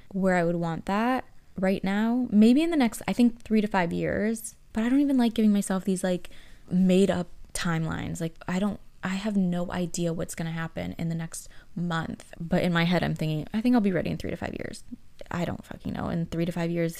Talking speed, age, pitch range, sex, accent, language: 240 wpm, 20-39, 170-200 Hz, female, American, English